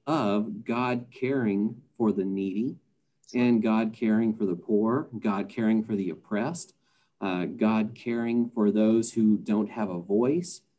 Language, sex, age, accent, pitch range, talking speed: English, male, 50-69, American, 105-125 Hz, 150 wpm